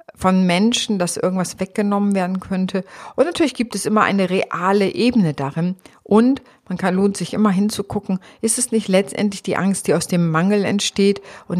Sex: female